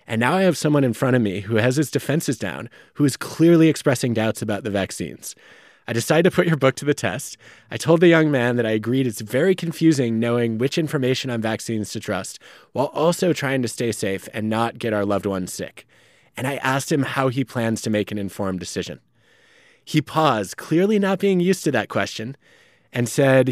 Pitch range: 110-140 Hz